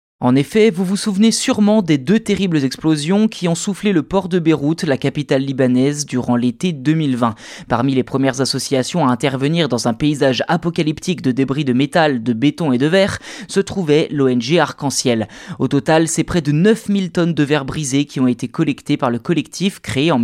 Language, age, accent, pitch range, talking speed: French, 20-39, French, 135-195 Hz, 195 wpm